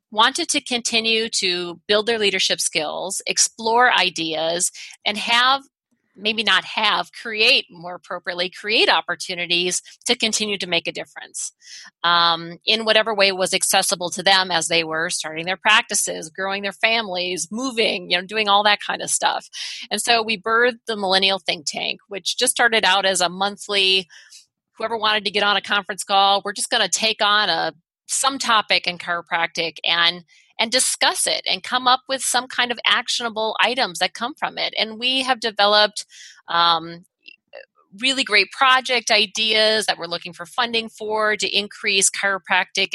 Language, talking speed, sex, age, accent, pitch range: English, 170 wpm, female, 30-49, American, 180-225 Hz